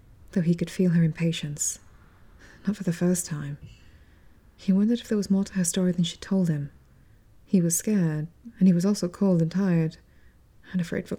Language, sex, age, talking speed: English, female, 20-39, 200 wpm